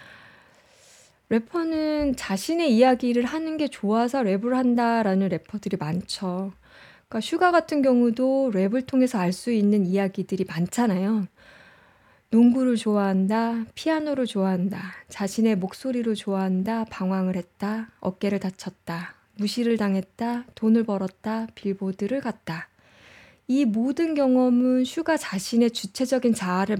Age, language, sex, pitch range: 20-39, Korean, female, 195-260 Hz